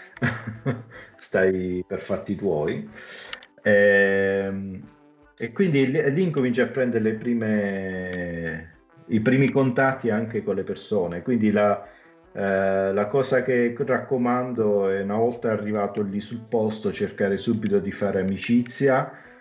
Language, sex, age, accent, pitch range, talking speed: Italian, male, 40-59, native, 95-120 Hz, 110 wpm